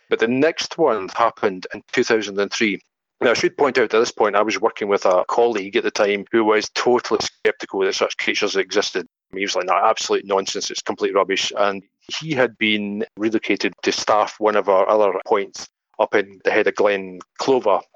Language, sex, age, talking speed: English, male, 40-59, 200 wpm